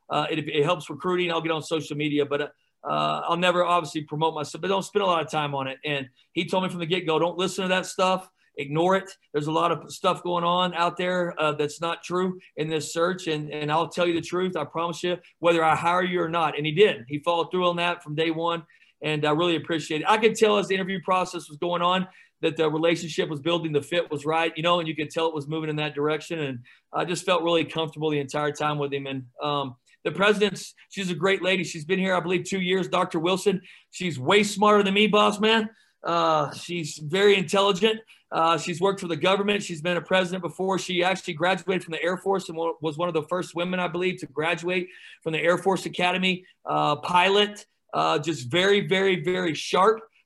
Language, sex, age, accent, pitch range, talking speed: English, male, 40-59, American, 155-185 Hz, 240 wpm